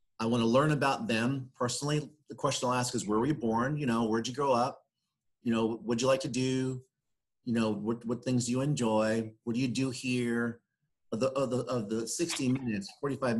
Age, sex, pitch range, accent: 40-59, male, 105-130 Hz, American